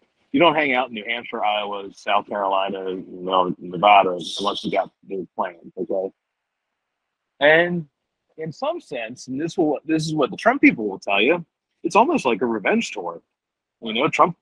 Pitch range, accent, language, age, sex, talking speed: 105-155 Hz, American, English, 40-59, male, 185 wpm